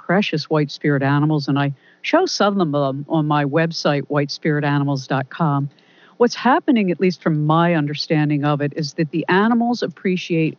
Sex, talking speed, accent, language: female, 160 wpm, American, English